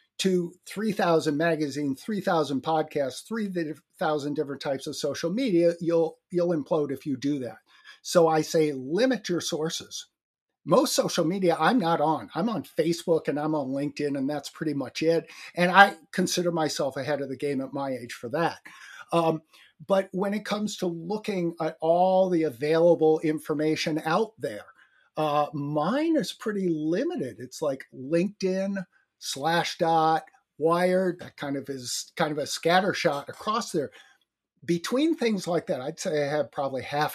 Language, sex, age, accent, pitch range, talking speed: English, male, 50-69, American, 150-190 Hz, 160 wpm